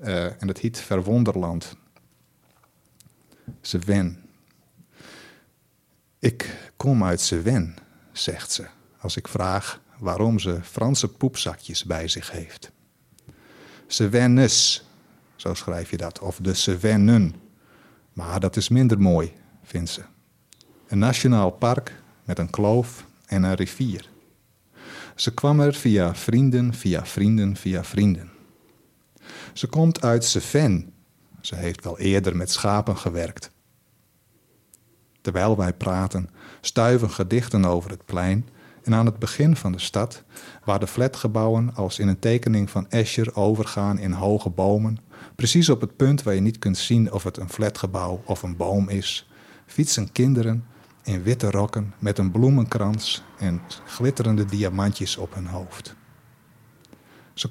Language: Dutch